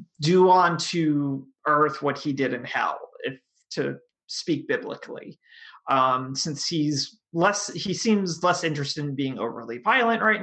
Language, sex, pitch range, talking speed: English, male, 135-190 Hz, 150 wpm